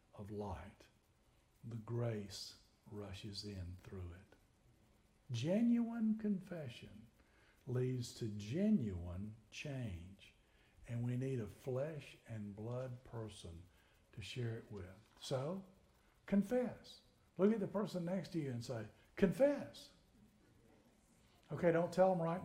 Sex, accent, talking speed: male, American, 115 wpm